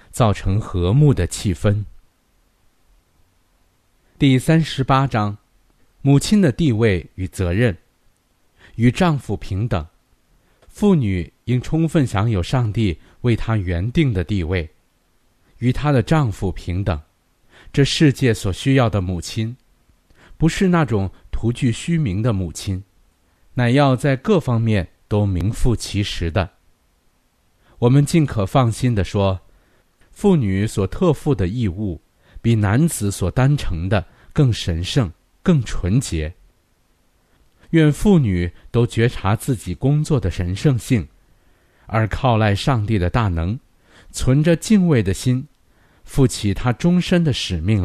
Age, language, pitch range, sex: 50-69, Chinese, 90-130 Hz, male